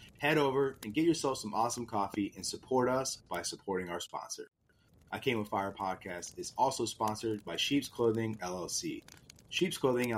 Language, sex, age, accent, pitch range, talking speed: English, male, 30-49, American, 105-135 Hz, 170 wpm